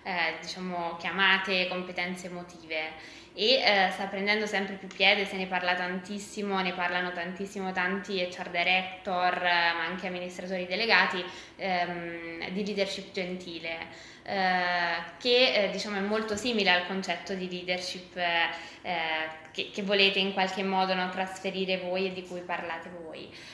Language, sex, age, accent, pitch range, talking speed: Italian, female, 20-39, native, 180-200 Hz, 150 wpm